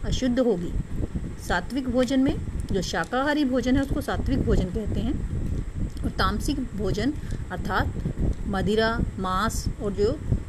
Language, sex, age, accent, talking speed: Hindi, female, 30-49, native, 125 wpm